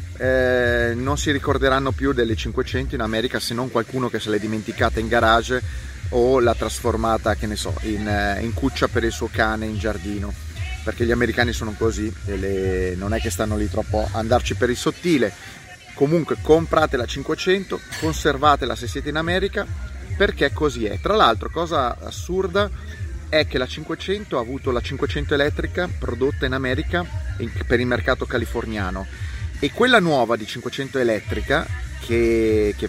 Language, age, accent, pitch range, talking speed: Italian, 30-49, native, 105-135 Hz, 165 wpm